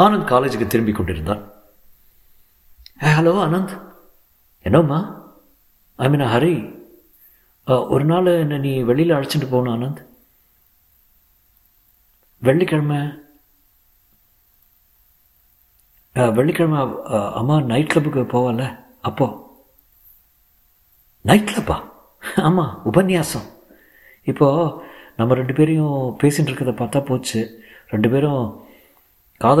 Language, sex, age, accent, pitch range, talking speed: Tamil, male, 50-69, native, 95-145 Hz, 50 wpm